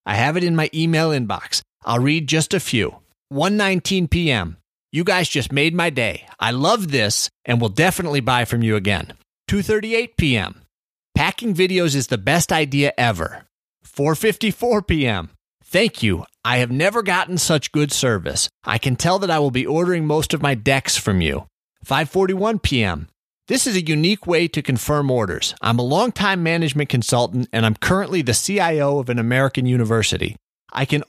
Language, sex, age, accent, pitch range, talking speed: English, male, 30-49, American, 120-170 Hz, 175 wpm